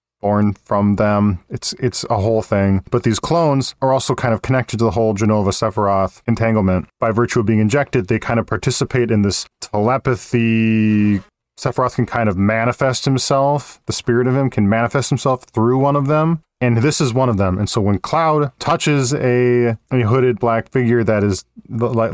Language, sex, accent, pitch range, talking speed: English, male, American, 105-130 Hz, 190 wpm